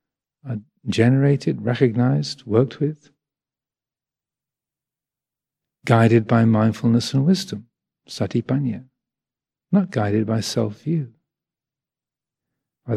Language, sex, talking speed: English, male, 75 wpm